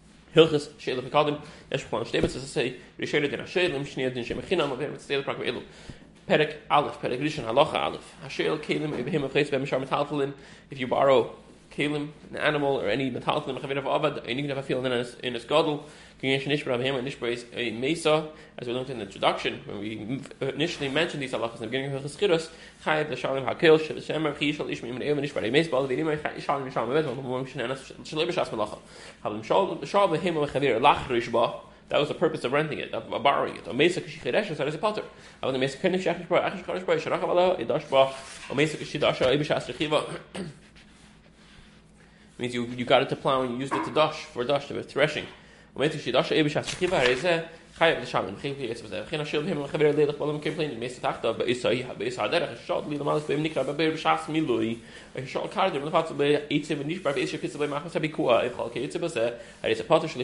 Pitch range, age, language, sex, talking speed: 130-160 Hz, 20-39, English, male, 70 wpm